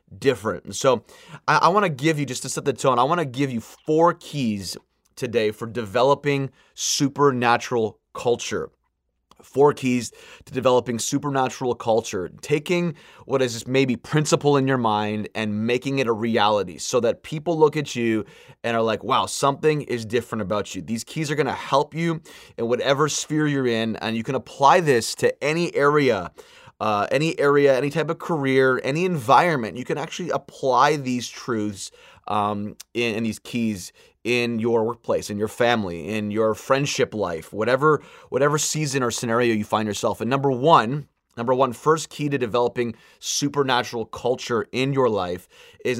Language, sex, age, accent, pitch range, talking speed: English, male, 20-39, American, 115-145 Hz, 175 wpm